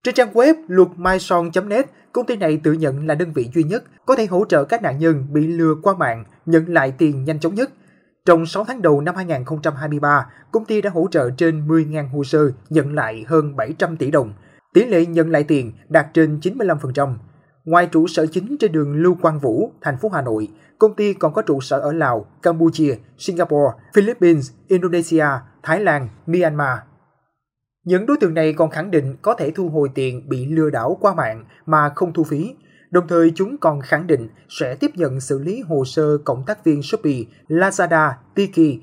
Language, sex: Vietnamese, male